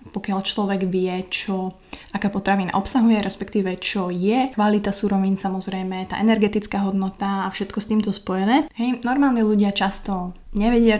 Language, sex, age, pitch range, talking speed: Slovak, female, 20-39, 190-210 Hz, 140 wpm